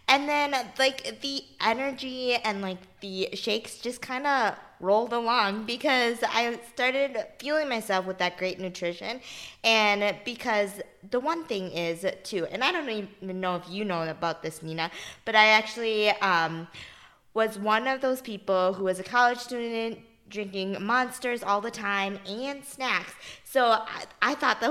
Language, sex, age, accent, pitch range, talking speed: English, female, 20-39, American, 190-250 Hz, 165 wpm